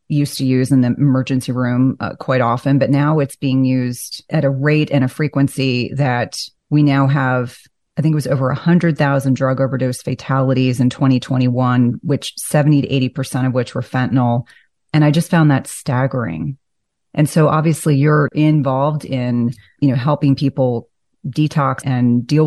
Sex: female